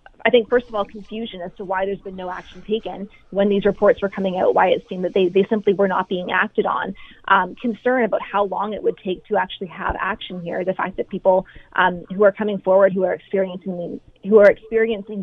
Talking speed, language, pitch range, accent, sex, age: 235 wpm, English, 185-210 Hz, American, female, 20-39